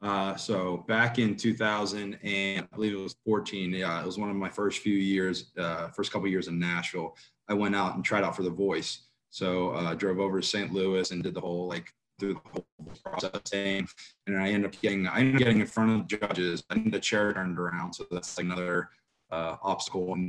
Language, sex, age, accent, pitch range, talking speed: English, male, 20-39, American, 90-105 Hz, 230 wpm